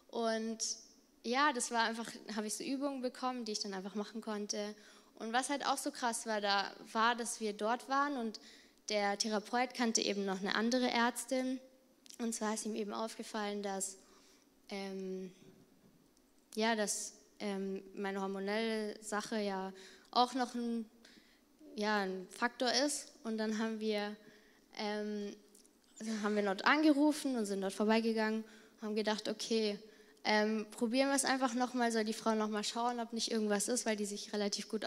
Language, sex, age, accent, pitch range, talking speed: German, female, 20-39, German, 210-245 Hz, 165 wpm